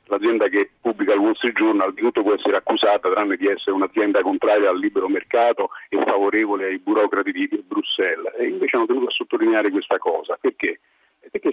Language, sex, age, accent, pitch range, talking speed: Italian, male, 50-69, native, 320-415 Hz, 195 wpm